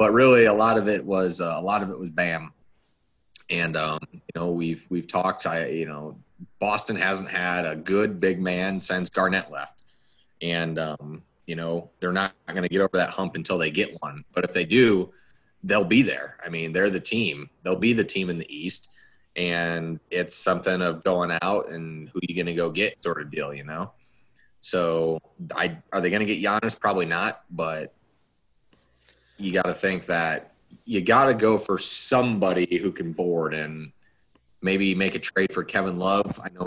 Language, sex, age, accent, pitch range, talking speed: English, male, 30-49, American, 85-95 Hz, 205 wpm